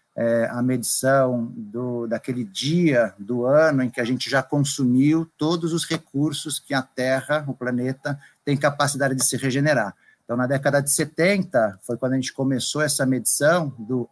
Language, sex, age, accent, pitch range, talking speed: Portuguese, male, 50-69, Brazilian, 130-160 Hz, 170 wpm